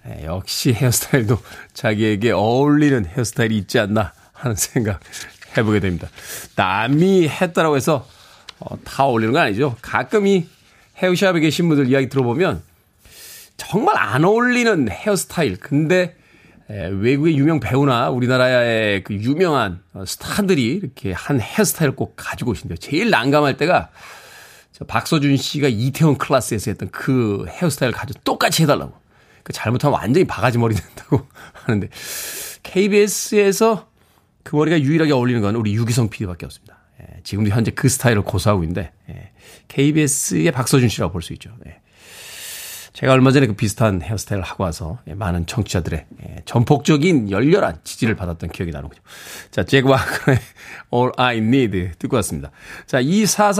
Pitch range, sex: 105-175 Hz, male